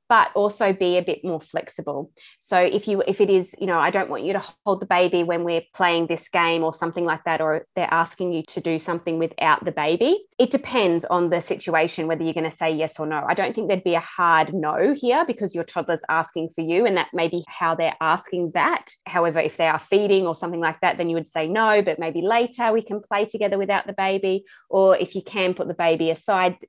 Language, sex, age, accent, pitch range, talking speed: English, female, 20-39, Australian, 165-195 Hz, 245 wpm